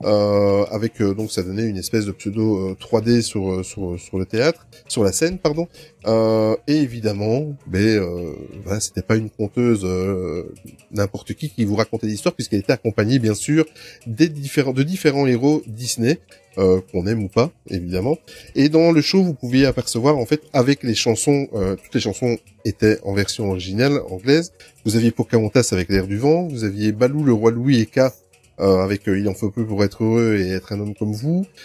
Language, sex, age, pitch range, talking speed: French, male, 20-39, 105-140 Hz, 205 wpm